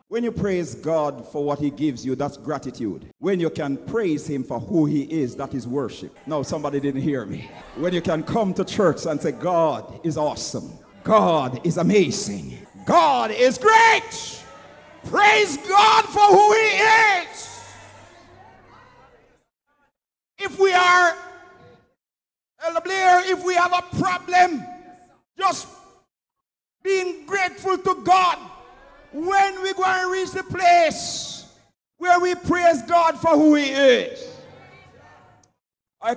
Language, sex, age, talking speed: English, male, 50-69, 135 wpm